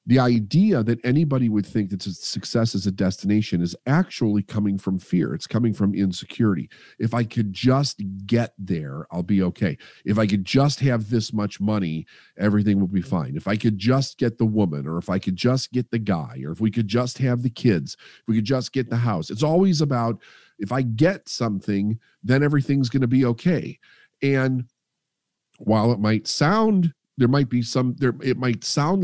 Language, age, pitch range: English, 40-59, 100-135 Hz